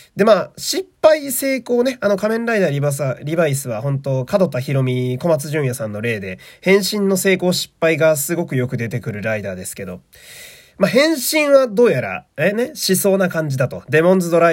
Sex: male